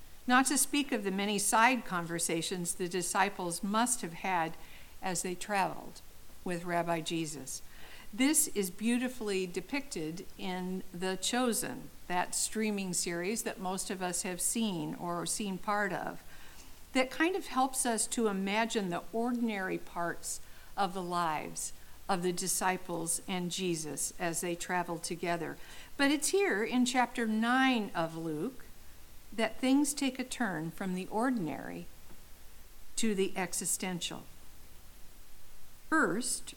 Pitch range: 170-230 Hz